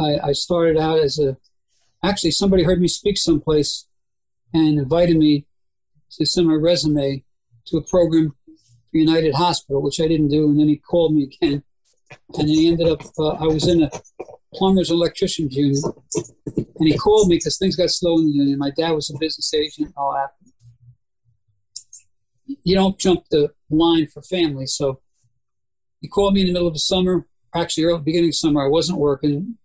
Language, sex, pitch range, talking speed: English, male, 140-170 Hz, 185 wpm